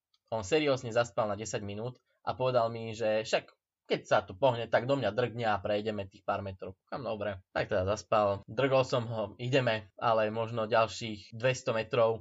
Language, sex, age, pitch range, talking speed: Slovak, male, 20-39, 110-130 Hz, 175 wpm